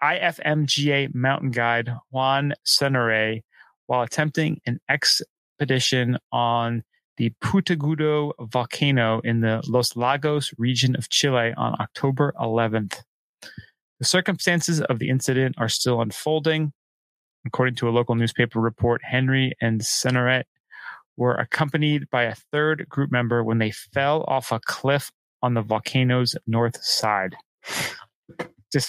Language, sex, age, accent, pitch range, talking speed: English, male, 30-49, American, 120-145 Hz, 125 wpm